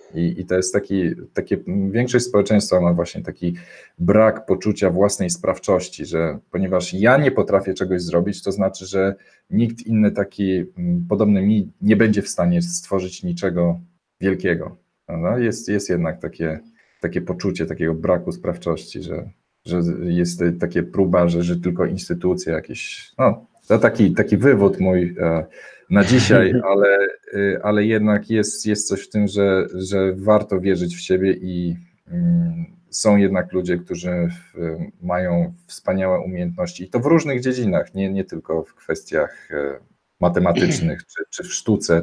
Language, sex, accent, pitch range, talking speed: Polish, male, native, 90-110 Hz, 145 wpm